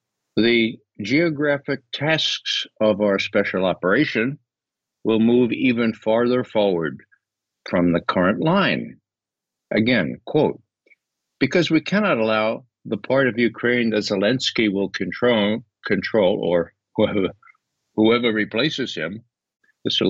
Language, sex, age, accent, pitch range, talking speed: English, male, 60-79, American, 105-150 Hz, 110 wpm